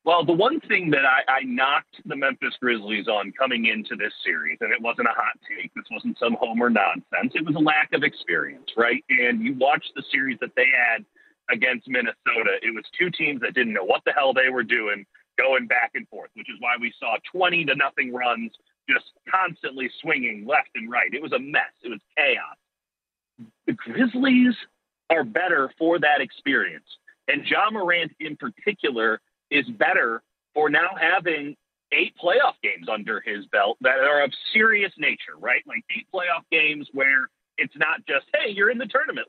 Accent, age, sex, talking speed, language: American, 40-59, male, 190 wpm, English